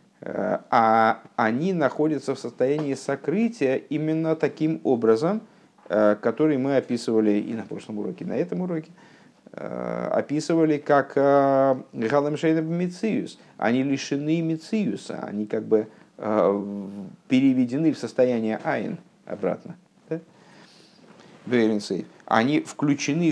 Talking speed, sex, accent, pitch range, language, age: 100 wpm, male, native, 115-165 Hz, Russian, 50-69